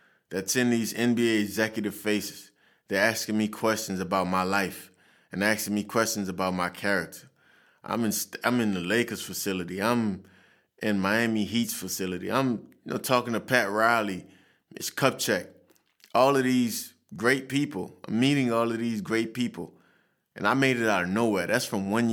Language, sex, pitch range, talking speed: English, male, 100-120 Hz, 170 wpm